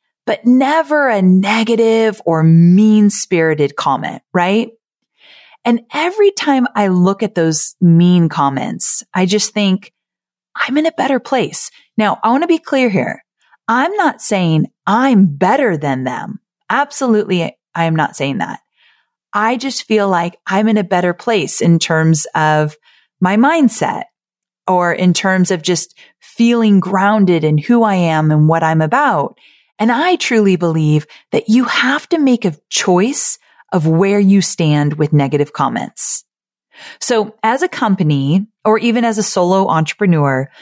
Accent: American